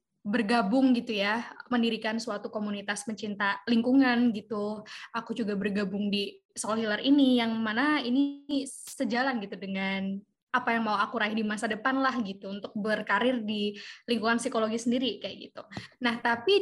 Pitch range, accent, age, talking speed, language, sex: 220-265 Hz, native, 20-39, 150 wpm, Indonesian, female